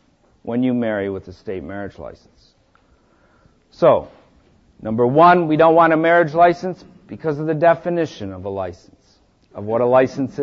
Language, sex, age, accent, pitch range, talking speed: English, male, 50-69, American, 130-175 Hz, 160 wpm